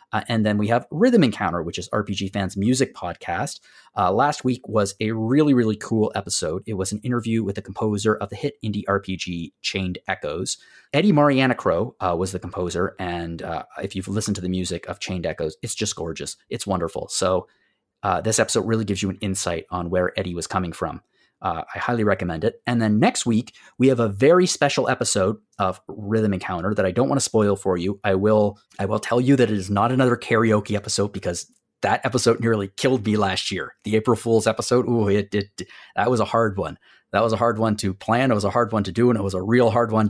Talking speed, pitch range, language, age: 230 wpm, 95-120 Hz, English, 30-49